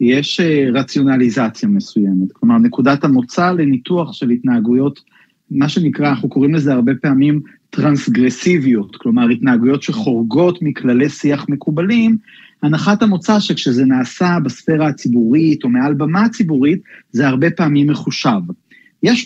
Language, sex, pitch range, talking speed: Hebrew, male, 145-190 Hz, 120 wpm